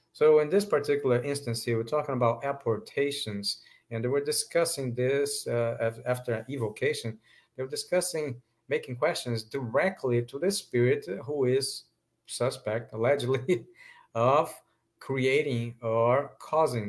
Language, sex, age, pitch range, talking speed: English, male, 50-69, 115-145 Hz, 130 wpm